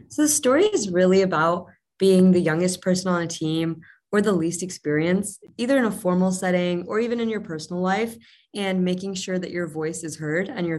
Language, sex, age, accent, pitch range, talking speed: English, female, 20-39, American, 165-190 Hz, 210 wpm